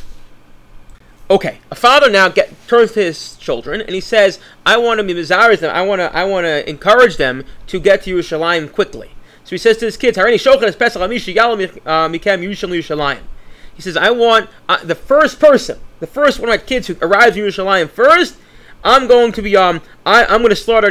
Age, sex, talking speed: 30-49, male, 180 wpm